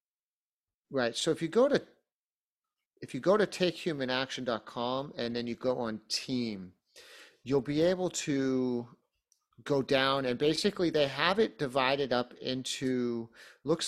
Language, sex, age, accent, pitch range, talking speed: English, male, 40-59, American, 120-150 Hz, 135 wpm